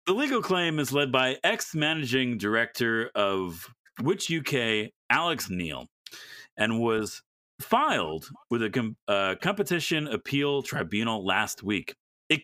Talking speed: 120 wpm